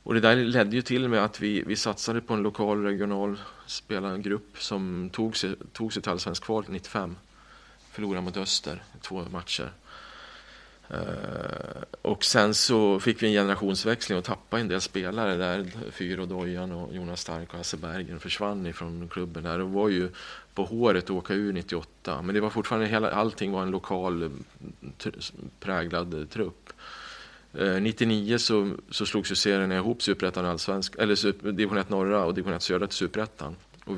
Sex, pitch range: male, 90-105 Hz